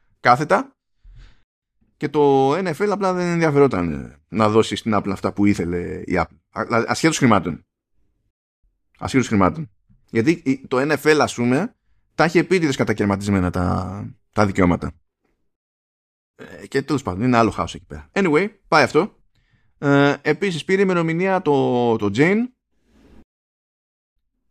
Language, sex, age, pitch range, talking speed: Greek, male, 20-39, 100-145 Hz, 115 wpm